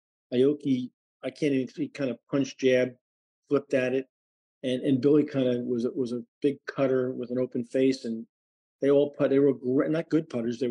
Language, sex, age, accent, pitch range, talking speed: English, male, 40-59, American, 115-140 Hz, 205 wpm